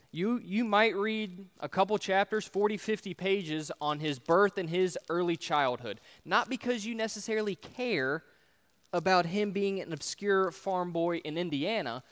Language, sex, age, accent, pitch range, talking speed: English, male, 20-39, American, 170-215 Hz, 155 wpm